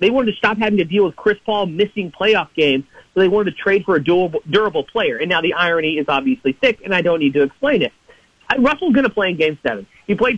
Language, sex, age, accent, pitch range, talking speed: English, male, 40-59, American, 160-215 Hz, 260 wpm